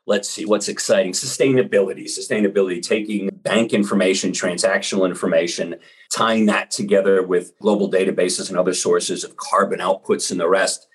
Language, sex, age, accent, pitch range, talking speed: English, male, 40-59, American, 100-145 Hz, 145 wpm